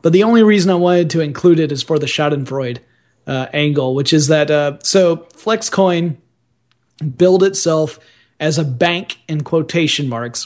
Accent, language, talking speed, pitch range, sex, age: American, English, 165 wpm, 135-175 Hz, male, 30-49